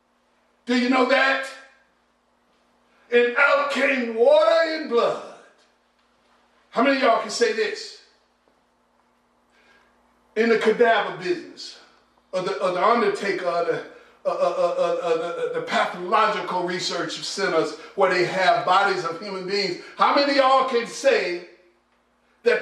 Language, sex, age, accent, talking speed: English, male, 50-69, American, 120 wpm